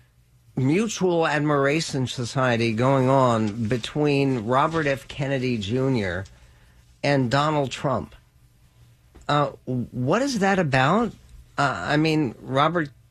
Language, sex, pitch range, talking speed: English, male, 115-140 Hz, 100 wpm